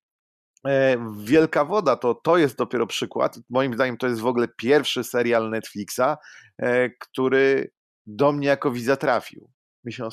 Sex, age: male, 30-49